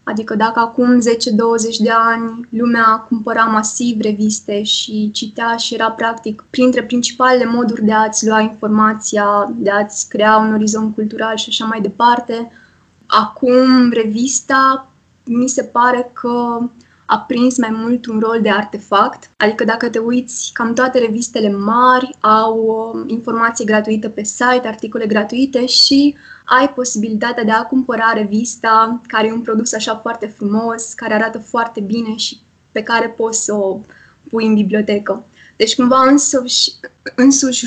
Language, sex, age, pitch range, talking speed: Romanian, female, 20-39, 220-240 Hz, 145 wpm